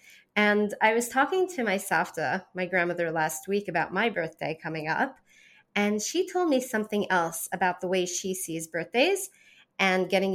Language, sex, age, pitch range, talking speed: English, female, 30-49, 185-250 Hz, 175 wpm